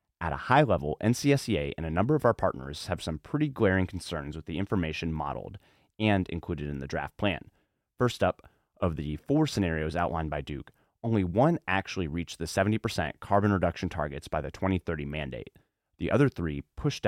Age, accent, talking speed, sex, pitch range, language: 30-49, American, 185 wpm, male, 80-100 Hz, English